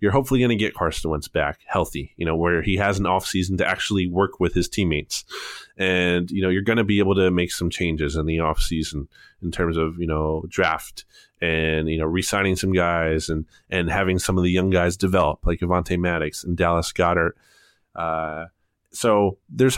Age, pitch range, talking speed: 20-39, 90-105 Hz, 210 wpm